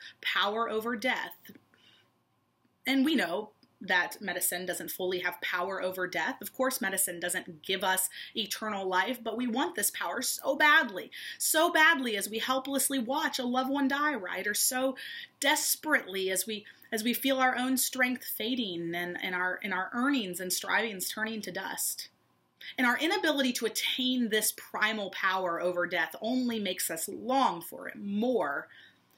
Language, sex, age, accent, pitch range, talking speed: English, female, 30-49, American, 190-265 Hz, 165 wpm